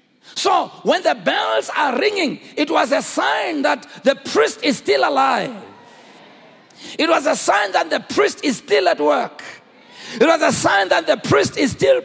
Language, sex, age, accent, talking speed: English, male, 50-69, South African, 180 wpm